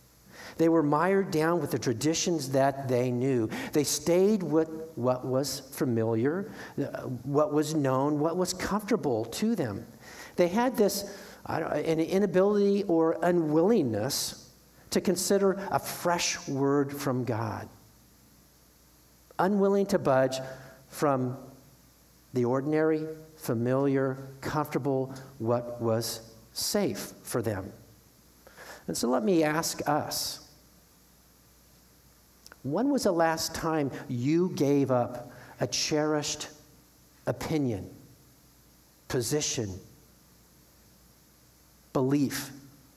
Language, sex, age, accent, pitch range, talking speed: English, male, 50-69, American, 125-170 Hz, 100 wpm